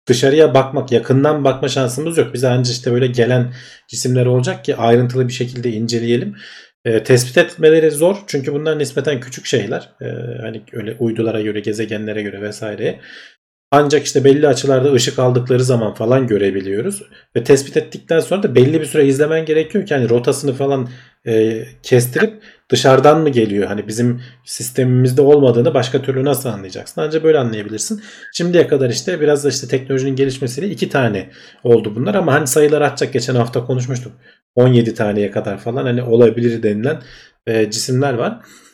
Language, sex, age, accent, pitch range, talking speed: Turkish, male, 40-59, native, 115-145 Hz, 160 wpm